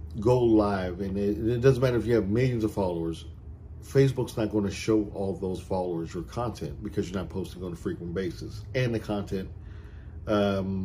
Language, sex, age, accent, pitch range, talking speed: English, male, 40-59, American, 95-110 Hz, 195 wpm